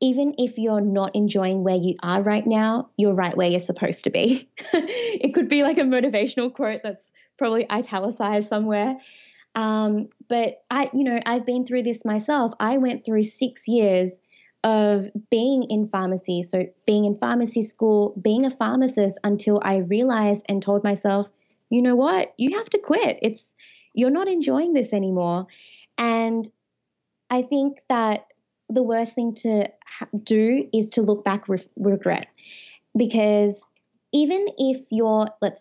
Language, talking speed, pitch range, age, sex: English, 160 wpm, 200-245 Hz, 20-39, female